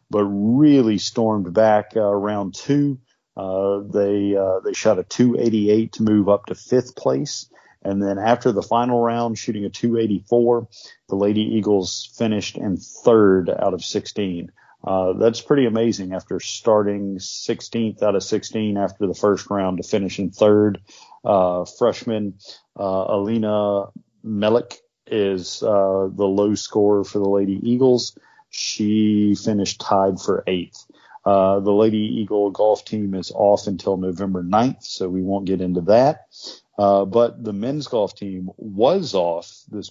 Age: 40-59